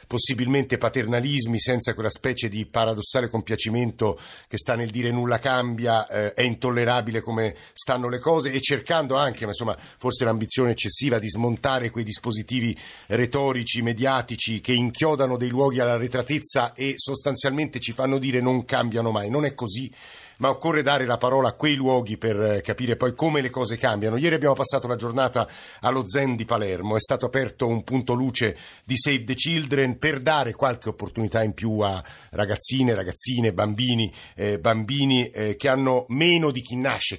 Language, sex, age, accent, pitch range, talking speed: Italian, male, 50-69, native, 115-135 Hz, 170 wpm